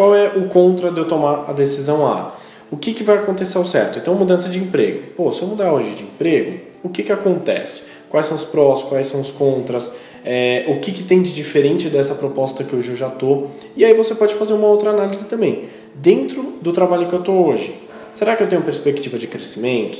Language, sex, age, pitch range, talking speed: Portuguese, male, 20-39, 125-180 Hz, 230 wpm